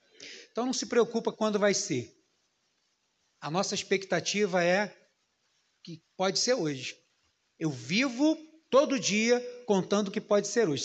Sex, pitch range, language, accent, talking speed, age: male, 195-265 Hz, Portuguese, Brazilian, 135 wpm, 40-59